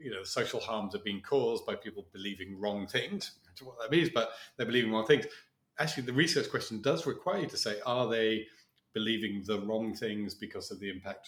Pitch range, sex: 110-150 Hz, male